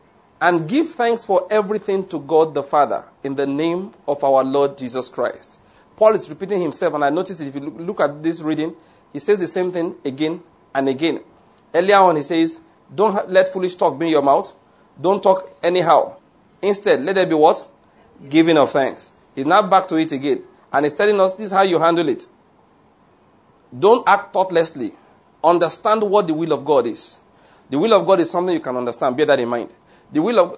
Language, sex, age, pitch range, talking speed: English, male, 40-59, 150-195 Hz, 200 wpm